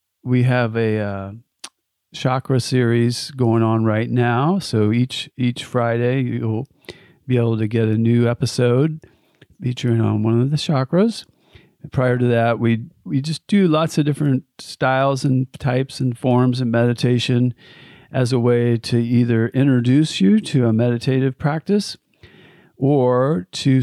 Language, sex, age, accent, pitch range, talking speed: English, male, 40-59, American, 115-140 Hz, 150 wpm